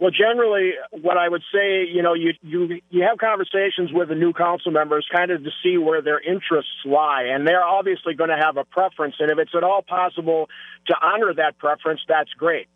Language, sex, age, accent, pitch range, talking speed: English, male, 50-69, American, 155-180 Hz, 215 wpm